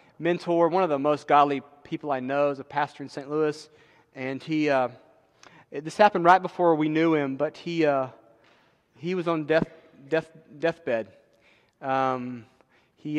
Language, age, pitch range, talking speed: English, 30-49, 140-175 Hz, 170 wpm